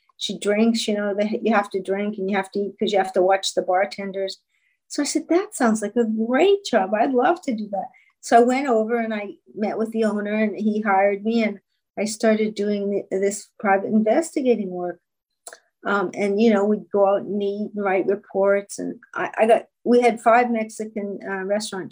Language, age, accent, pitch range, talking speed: English, 50-69, American, 195-235 Hz, 215 wpm